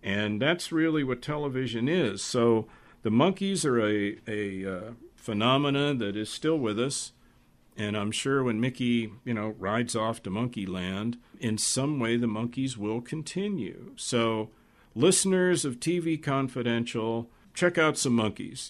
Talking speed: 150 wpm